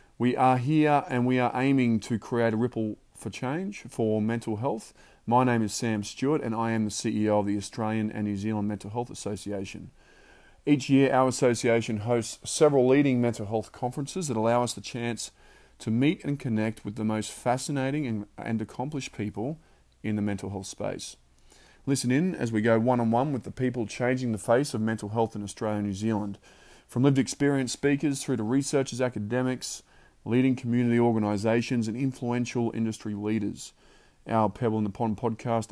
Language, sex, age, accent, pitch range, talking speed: English, male, 30-49, Australian, 110-130 Hz, 180 wpm